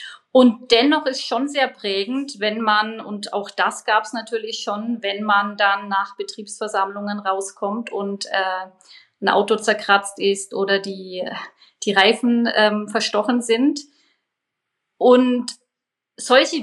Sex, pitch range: female, 195-235 Hz